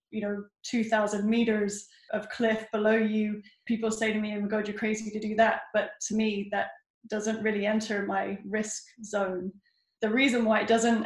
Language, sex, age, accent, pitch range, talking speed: English, female, 10-29, British, 205-225 Hz, 190 wpm